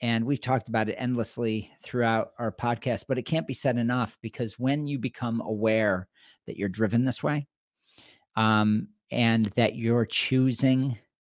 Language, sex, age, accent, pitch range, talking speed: English, male, 40-59, American, 110-125 Hz, 160 wpm